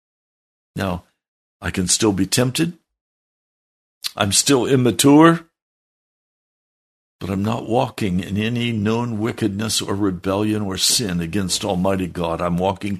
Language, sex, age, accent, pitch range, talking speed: English, male, 60-79, American, 95-140 Hz, 120 wpm